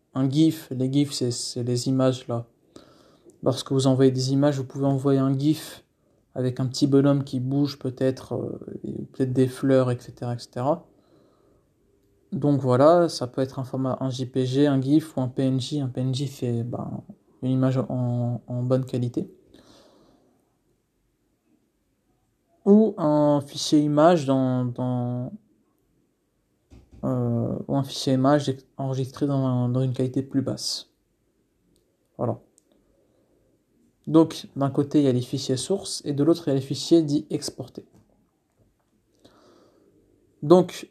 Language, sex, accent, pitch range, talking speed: French, male, French, 125-145 Hz, 140 wpm